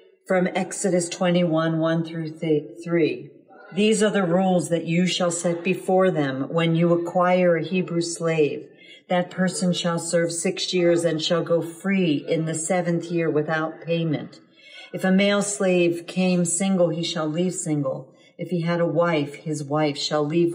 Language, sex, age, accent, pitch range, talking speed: English, female, 40-59, American, 155-180 Hz, 165 wpm